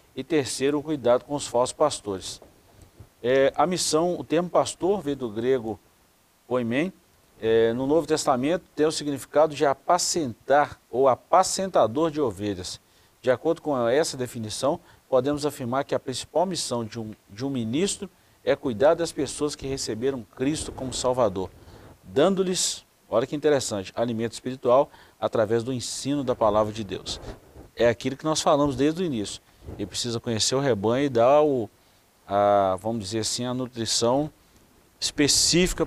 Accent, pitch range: Brazilian, 110-145 Hz